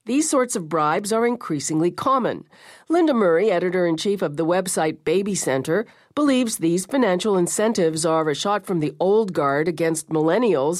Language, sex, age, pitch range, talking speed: English, female, 50-69, 160-220 Hz, 155 wpm